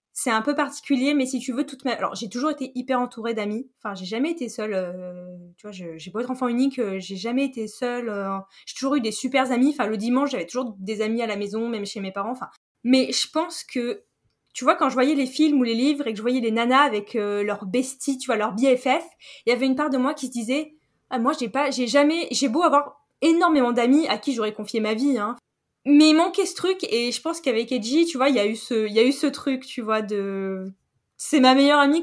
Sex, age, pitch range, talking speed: female, 10-29, 220-275 Hz, 260 wpm